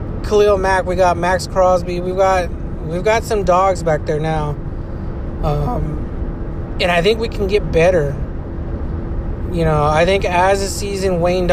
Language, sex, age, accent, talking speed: English, male, 20-39, American, 160 wpm